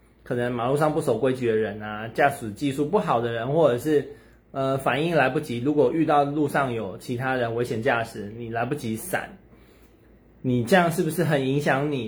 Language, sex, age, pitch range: Chinese, male, 20-39, 120-155 Hz